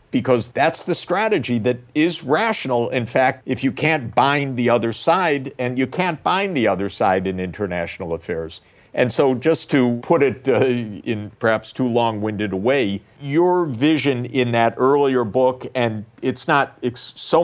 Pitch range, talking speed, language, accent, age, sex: 105-140 Hz, 170 wpm, English, American, 50-69, male